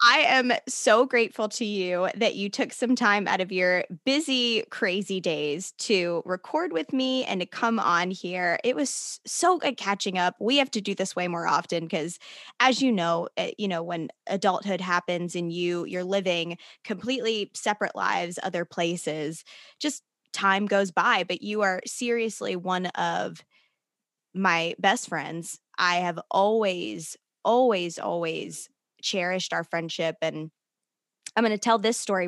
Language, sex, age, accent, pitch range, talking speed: English, female, 20-39, American, 175-230 Hz, 160 wpm